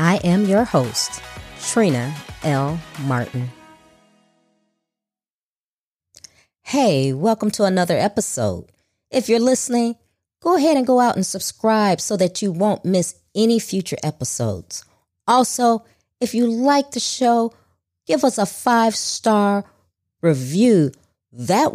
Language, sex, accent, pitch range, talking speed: English, female, American, 130-215 Hz, 120 wpm